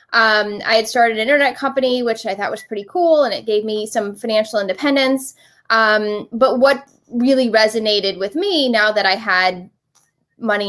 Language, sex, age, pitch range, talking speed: English, female, 20-39, 215-255 Hz, 175 wpm